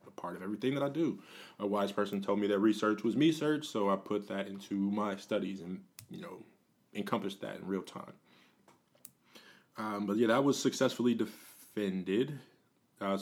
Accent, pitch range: American, 100-115 Hz